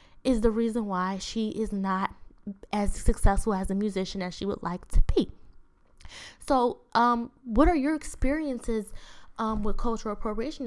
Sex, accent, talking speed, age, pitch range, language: female, American, 155 wpm, 10-29, 200-240 Hz, English